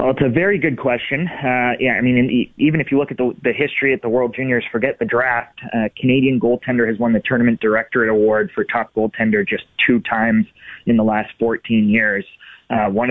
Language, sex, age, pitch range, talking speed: English, male, 20-39, 115-130 Hz, 215 wpm